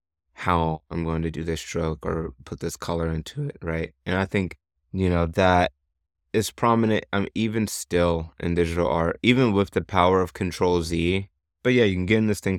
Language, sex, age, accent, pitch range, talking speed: English, male, 20-39, American, 80-95 Hz, 200 wpm